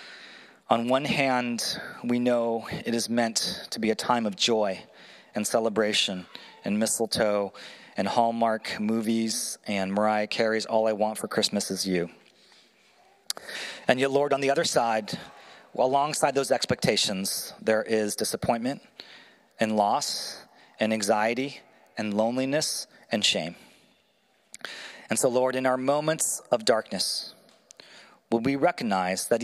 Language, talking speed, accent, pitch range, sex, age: English, 130 wpm, American, 110-130 Hz, male, 30-49